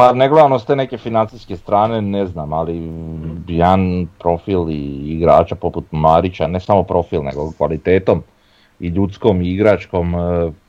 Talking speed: 135 wpm